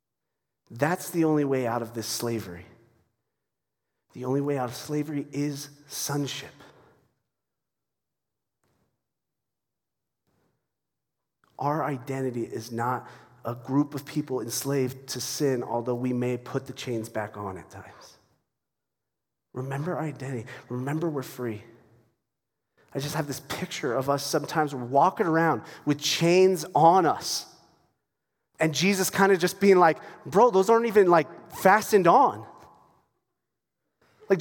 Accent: American